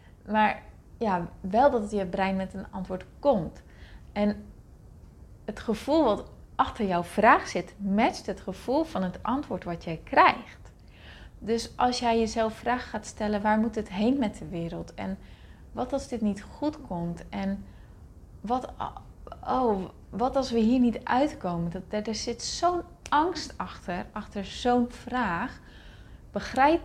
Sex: female